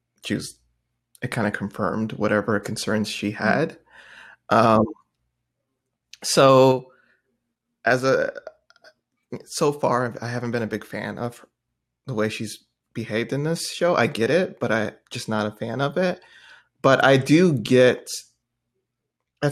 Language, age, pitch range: English, 20-39, 110-130 Hz